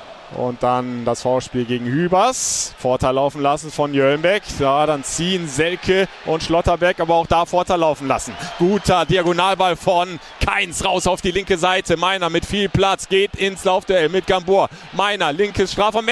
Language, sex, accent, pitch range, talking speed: German, male, German, 175-220 Hz, 170 wpm